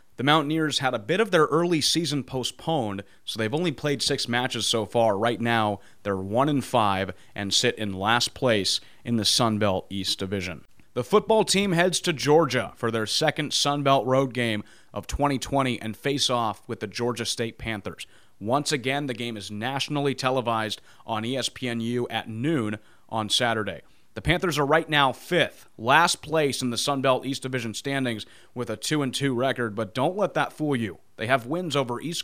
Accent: American